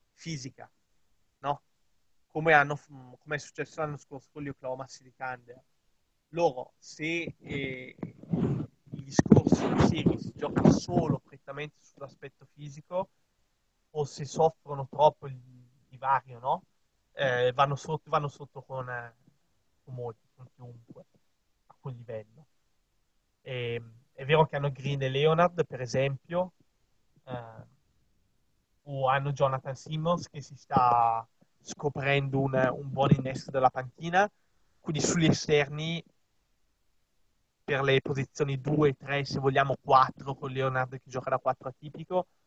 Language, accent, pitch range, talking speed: Italian, native, 130-150 Hz, 130 wpm